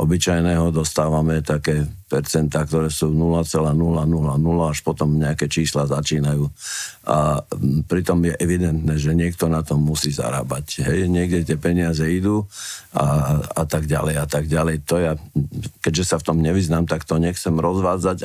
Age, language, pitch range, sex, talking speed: 50-69, Slovak, 80-95 Hz, male, 140 wpm